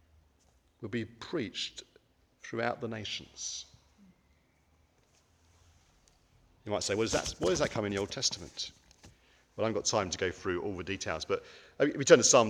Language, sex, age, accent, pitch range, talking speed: English, male, 40-59, British, 85-140 Hz, 180 wpm